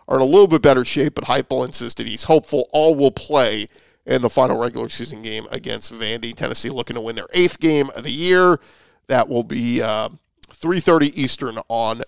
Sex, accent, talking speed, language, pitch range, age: male, American, 200 wpm, English, 125-160 Hz, 40-59